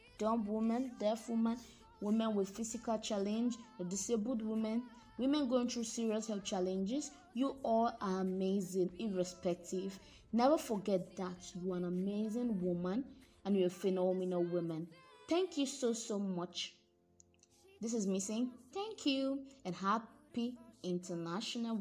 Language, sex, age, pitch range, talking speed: English, female, 20-39, 180-245 Hz, 135 wpm